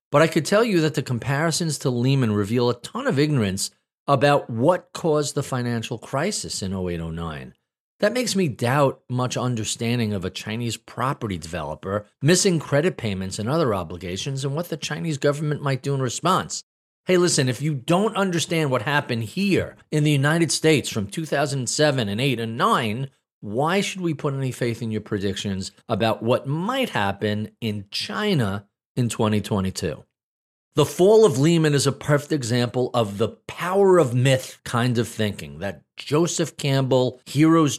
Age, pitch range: 40-59, 110-150 Hz